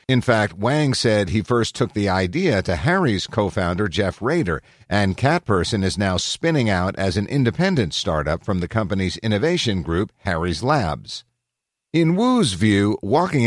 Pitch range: 95-130 Hz